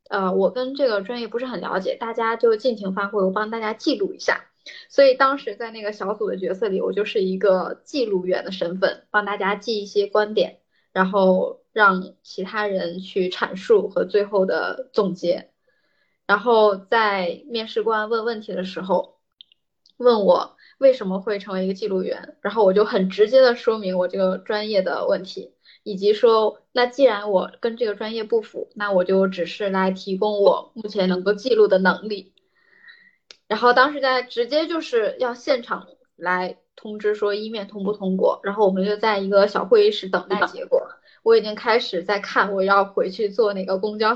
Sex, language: female, Chinese